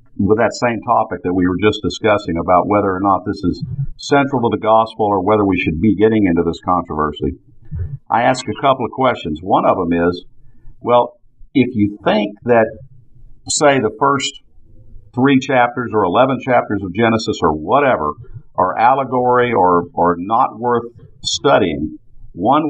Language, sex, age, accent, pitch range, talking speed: English, male, 50-69, American, 105-130 Hz, 165 wpm